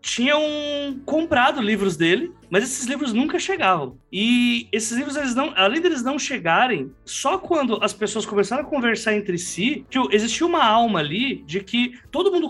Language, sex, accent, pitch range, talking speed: Portuguese, male, Brazilian, 190-265 Hz, 165 wpm